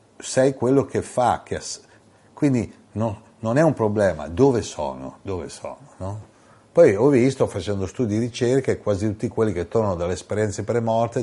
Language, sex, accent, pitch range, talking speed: Italian, male, native, 95-110 Hz, 175 wpm